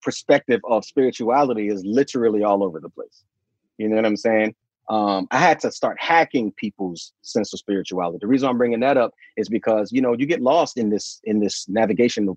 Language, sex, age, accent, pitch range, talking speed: English, male, 30-49, American, 110-160 Hz, 205 wpm